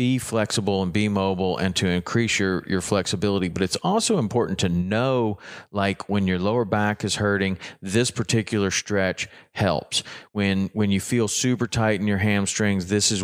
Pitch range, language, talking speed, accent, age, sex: 95-120 Hz, English, 175 wpm, American, 40-59, male